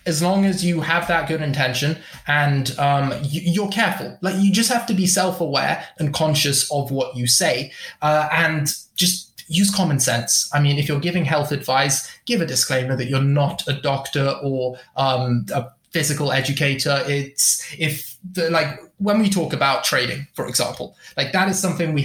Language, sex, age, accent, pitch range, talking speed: English, male, 20-39, British, 140-185 Hz, 180 wpm